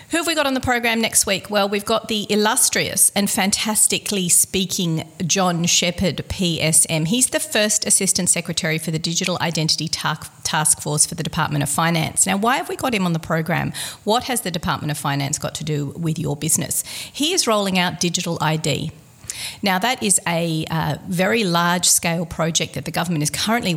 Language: English